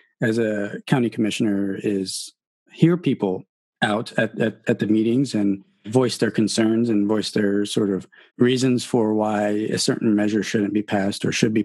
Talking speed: 175 wpm